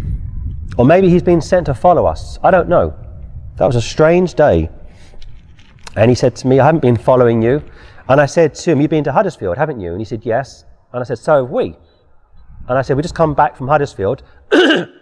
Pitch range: 90-140 Hz